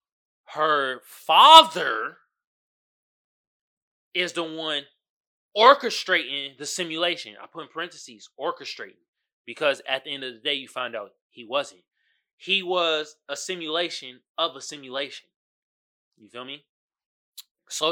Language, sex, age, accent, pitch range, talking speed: English, male, 20-39, American, 140-195 Hz, 120 wpm